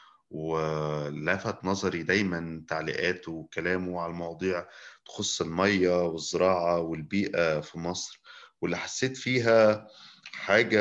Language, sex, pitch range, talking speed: Arabic, male, 85-105 Hz, 95 wpm